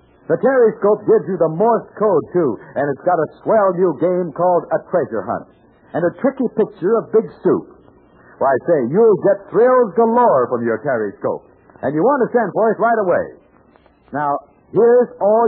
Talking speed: 195 wpm